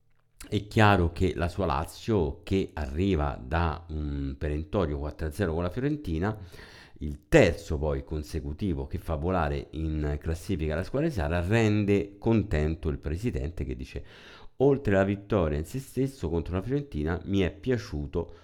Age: 50-69